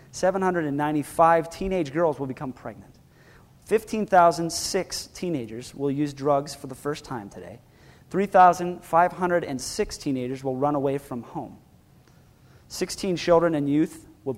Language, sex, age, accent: English, male, 30-49, American